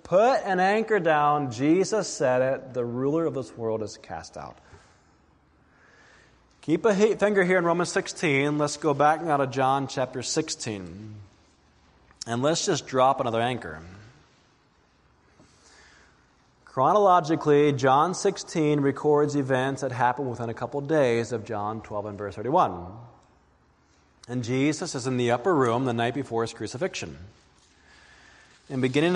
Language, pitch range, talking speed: English, 115-150 Hz, 140 wpm